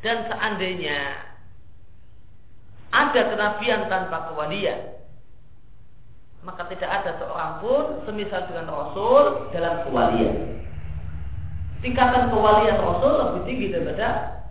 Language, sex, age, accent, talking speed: Indonesian, female, 40-59, native, 90 wpm